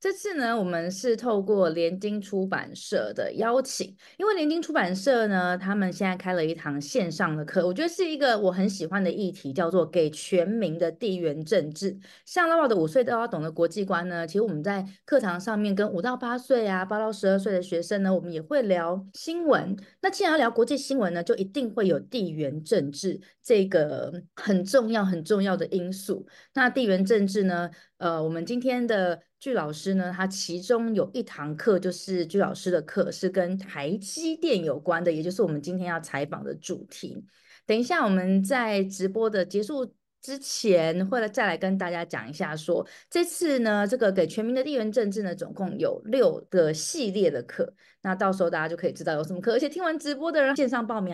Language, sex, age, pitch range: Chinese, female, 30-49, 175-240 Hz